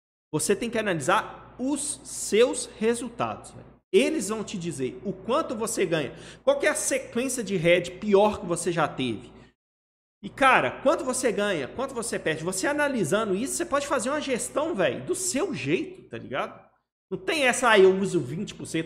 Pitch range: 180-270 Hz